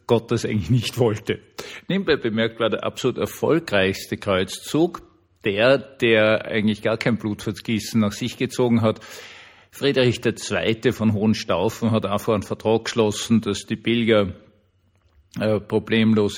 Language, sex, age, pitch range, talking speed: German, male, 50-69, 100-115 Hz, 130 wpm